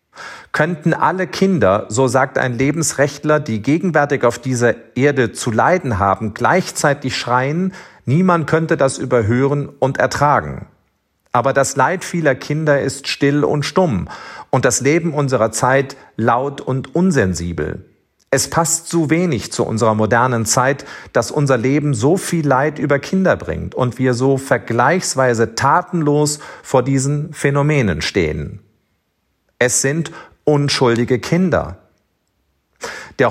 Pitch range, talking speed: 120-160 Hz, 130 wpm